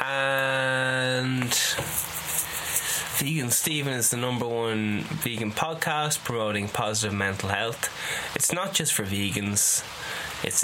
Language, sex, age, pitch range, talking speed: English, male, 10-29, 110-135 Hz, 105 wpm